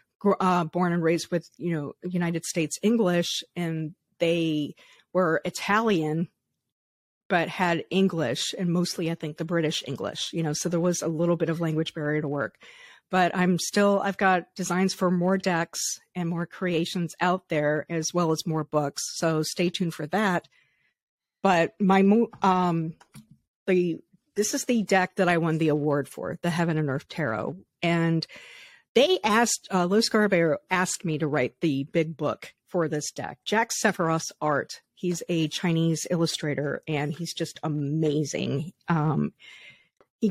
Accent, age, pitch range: American, 50-69, 155-185 Hz